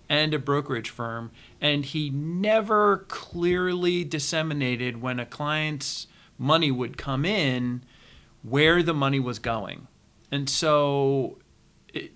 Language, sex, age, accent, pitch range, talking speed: English, male, 40-59, American, 125-150 Hz, 120 wpm